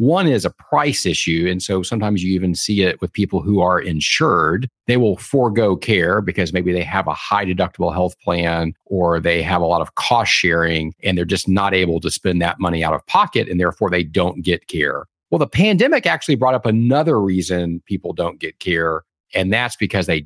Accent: American